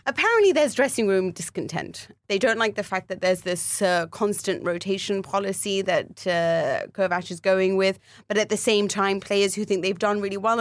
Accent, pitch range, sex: British, 175-205 Hz, female